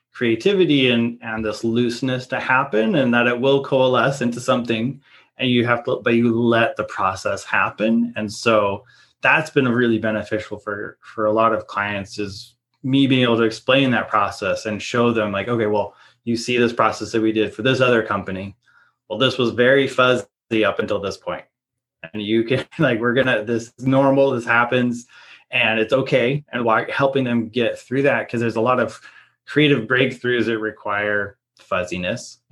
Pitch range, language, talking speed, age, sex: 110-130 Hz, English, 185 wpm, 20-39, male